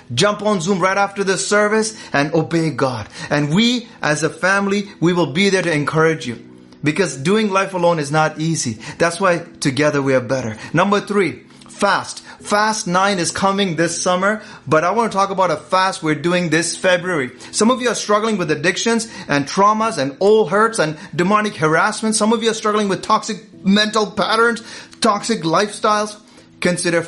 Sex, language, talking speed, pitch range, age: male, English, 185 wpm, 145-210 Hz, 30-49